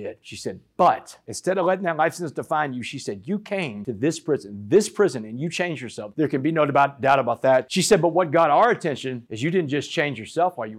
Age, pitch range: 40-59, 135-210 Hz